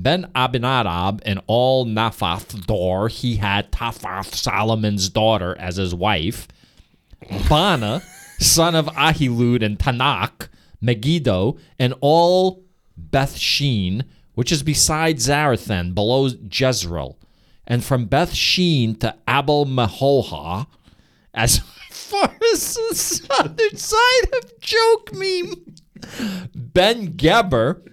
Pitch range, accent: 105-165 Hz, American